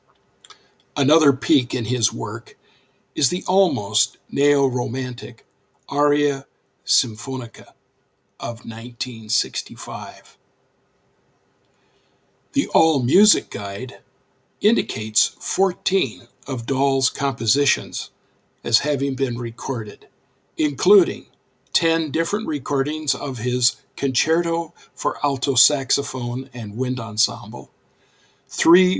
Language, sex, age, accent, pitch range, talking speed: English, male, 60-79, American, 120-150 Hz, 85 wpm